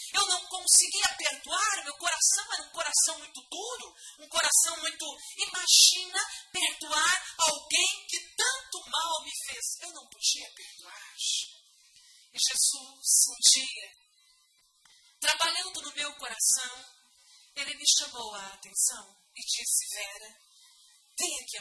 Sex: female